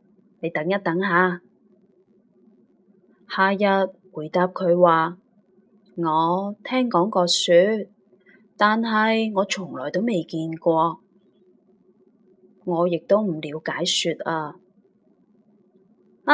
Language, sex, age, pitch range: Chinese, female, 20-39, 180-215 Hz